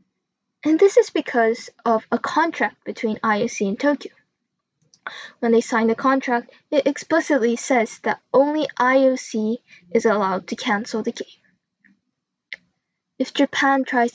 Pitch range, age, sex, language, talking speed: 230-280 Hz, 10-29, female, English, 130 wpm